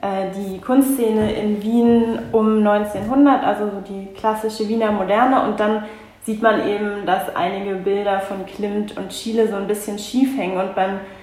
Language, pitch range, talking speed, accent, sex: German, 195-220 Hz, 160 wpm, German, female